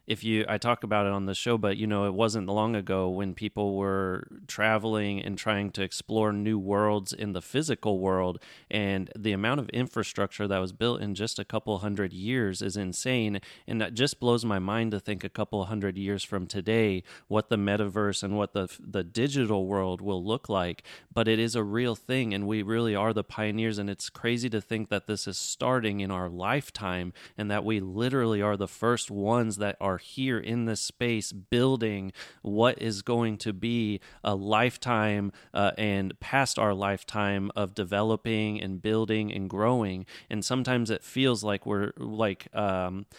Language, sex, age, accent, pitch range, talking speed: English, male, 30-49, American, 100-115 Hz, 190 wpm